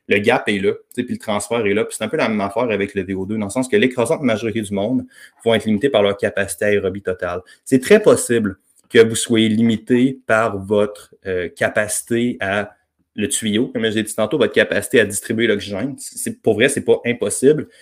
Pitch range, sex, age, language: 100-125 Hz, male, 20-39, French